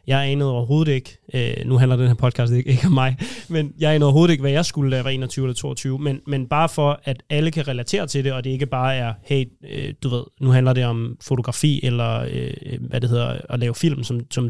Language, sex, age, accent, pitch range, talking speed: Danish, male, 20-39, native, 125-145 Hz, 235 wpm